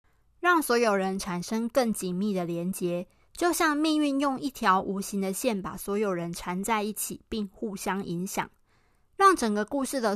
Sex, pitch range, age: female, 190-250 Hz, 20-39